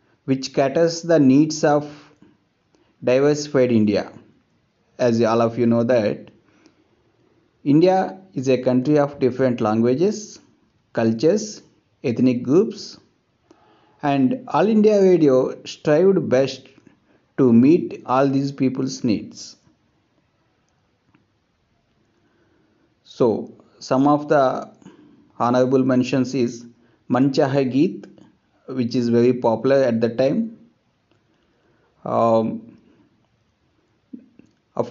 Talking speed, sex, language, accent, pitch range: 90 wpm, male, English, Indian, 125-185 Hz